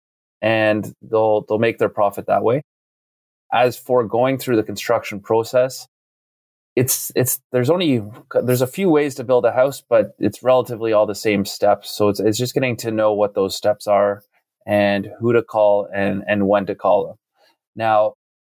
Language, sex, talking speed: English, male, 180 wpm